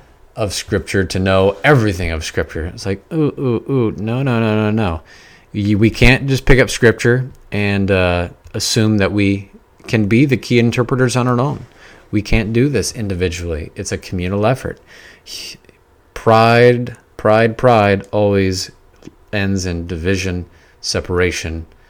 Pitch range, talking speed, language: 90-110 Hz, 150 wpm, English